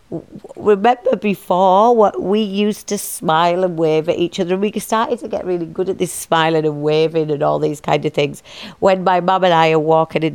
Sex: female